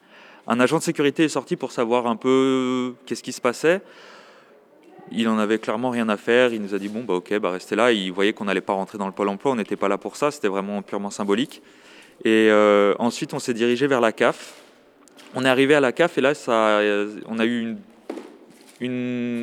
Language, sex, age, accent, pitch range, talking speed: French, male, 20-39, French, 115-145 Hz, 230 wpm